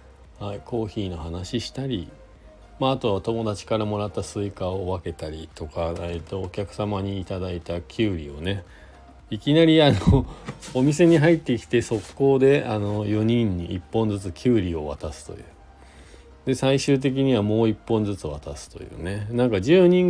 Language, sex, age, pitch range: Japanese, male, 40-59, 85-120 Hz